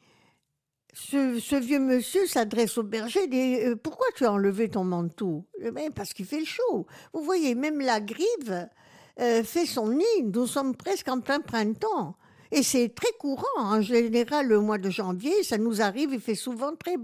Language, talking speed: French, 200 wpm